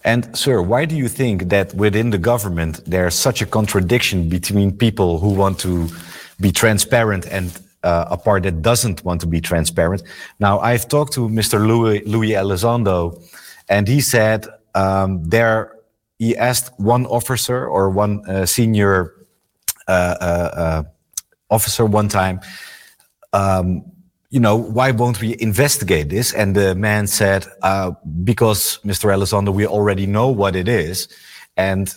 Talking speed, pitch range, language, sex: 150 wpm, 95-115 Hz, Dutch, male